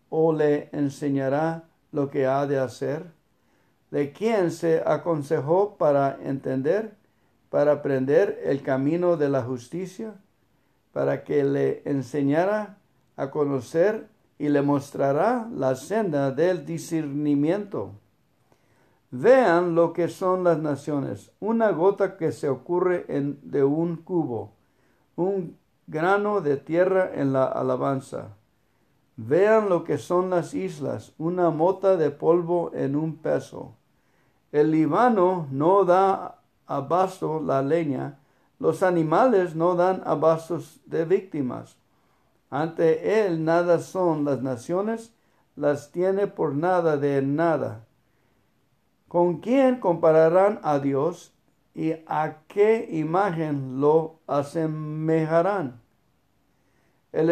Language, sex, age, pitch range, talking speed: English, male, 60-79, 140-180 Hz, 110 wpm